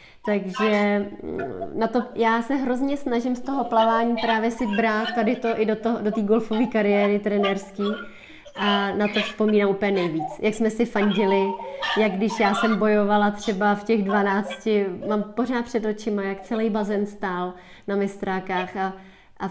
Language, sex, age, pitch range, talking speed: Czech, female, 20-39, 205-235 Hz, 165 wpm